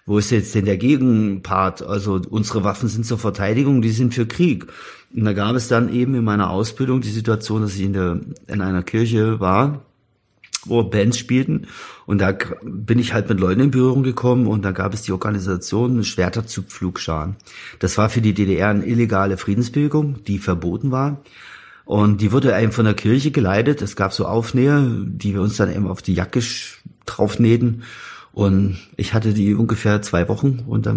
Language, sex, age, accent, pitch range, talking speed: German, male, 50-69, German, 95-115 Hz, 185 wpm